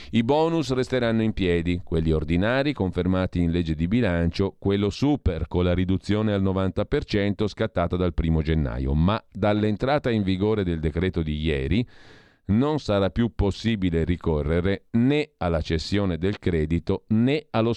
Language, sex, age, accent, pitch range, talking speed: Italian, male, 40-59, native, 80-105 Hz, 145 wpm